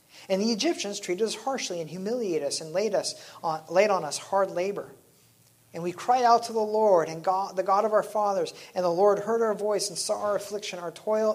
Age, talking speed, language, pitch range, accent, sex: 40-59, 235 wpm, English, 140-175 Hz, American, male